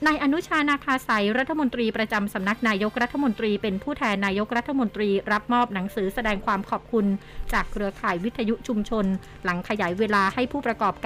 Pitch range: 200-235 Hz